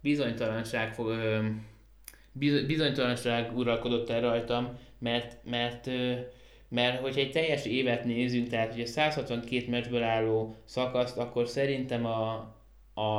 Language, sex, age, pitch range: Hungarian, male, 20-39, 110-125 Hz